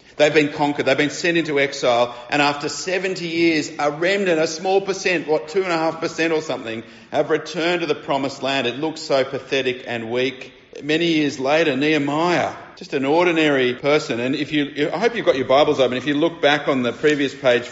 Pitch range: 120-155 Hz